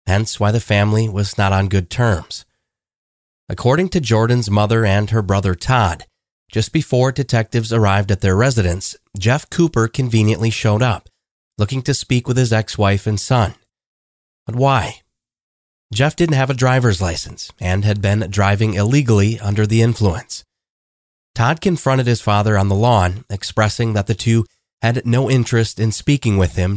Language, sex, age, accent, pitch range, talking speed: English, male, 30-49, American, 100-120 Hz, 160 wpm